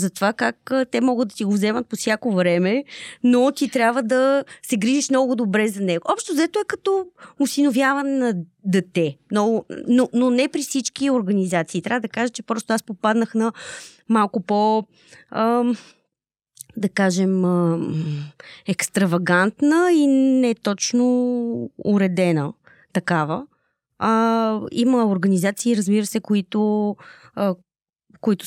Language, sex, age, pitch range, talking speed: Bulgarian, female, 20-39, 175-240 Hz, 135 wpm